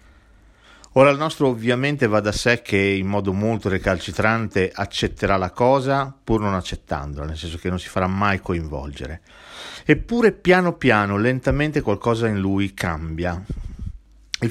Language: Italian